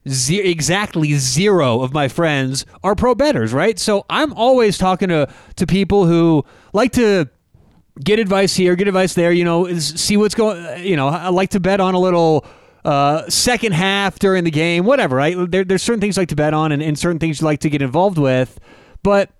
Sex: male